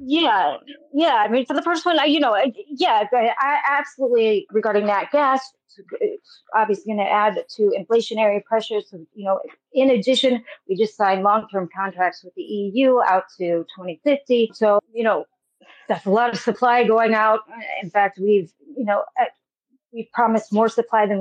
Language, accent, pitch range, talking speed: English, American, 200-260 Hz, 180 wpm